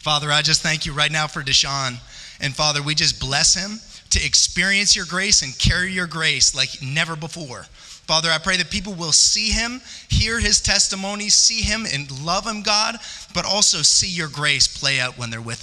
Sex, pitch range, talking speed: male, 145-215 Hz, 205 wpm